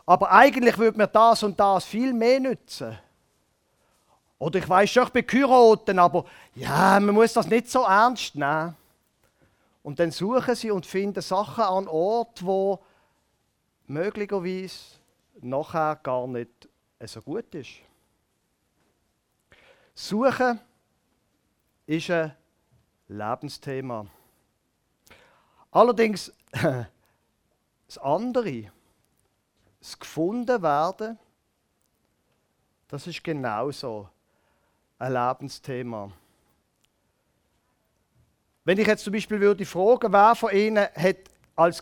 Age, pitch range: 40-59, 155-225 Hz